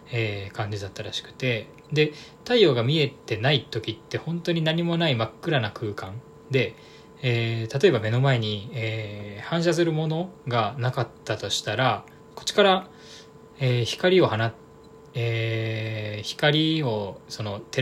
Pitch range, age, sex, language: 110-150 Hz, 20-39, male, Japanese